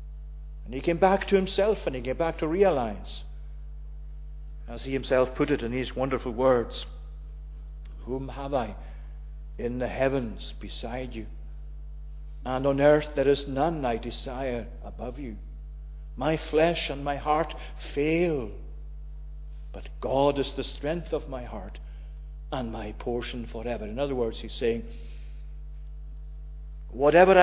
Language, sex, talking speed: English, male, 140 wpm